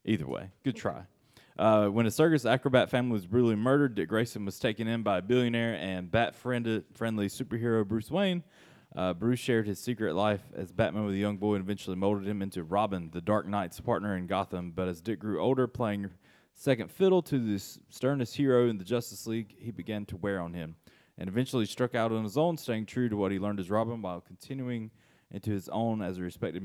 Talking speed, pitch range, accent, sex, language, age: 215 wpm, 95-120 Hz, American, male, English, 20-39